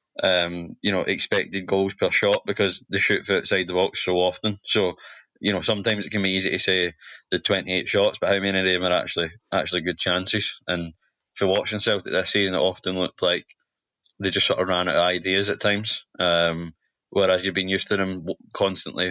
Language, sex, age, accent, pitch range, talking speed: English, male, 20-39, British, 90-100 Hz, 210 wpm